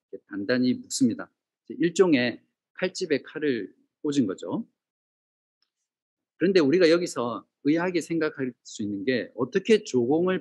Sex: male